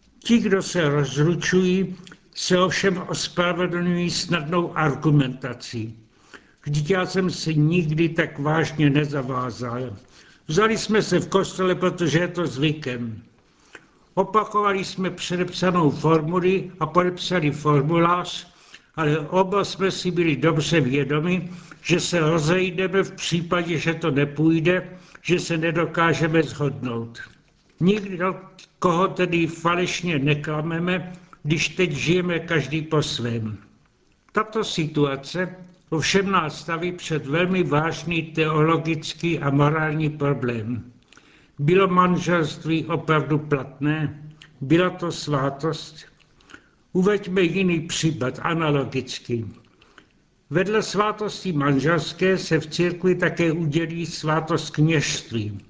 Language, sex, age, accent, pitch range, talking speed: Czech, male, 70-89, native, 150-180 Hz, 100 wpm